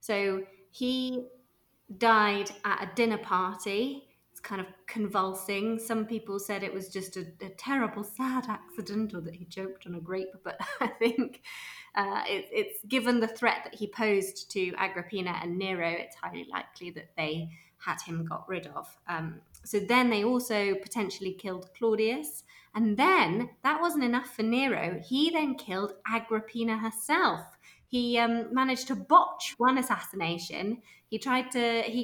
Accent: British